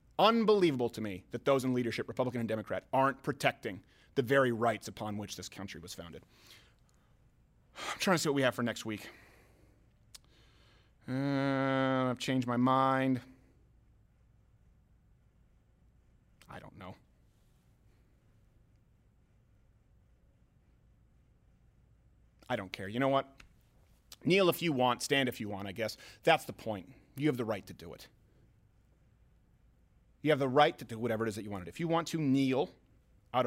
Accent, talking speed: American, 150 wpm